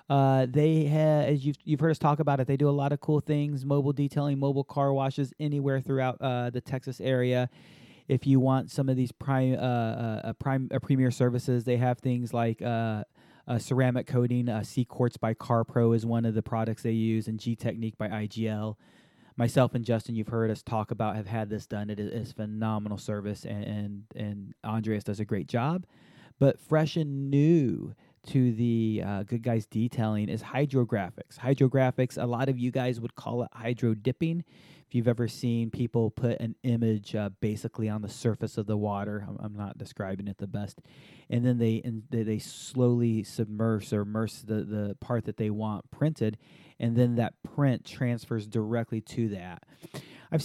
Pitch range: 110-135 Hz